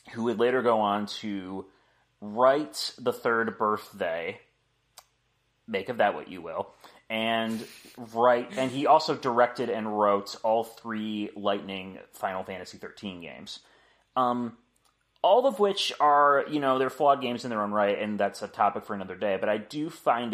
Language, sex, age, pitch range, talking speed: English, male, 30-49, 100-120 Hz, 165 wpm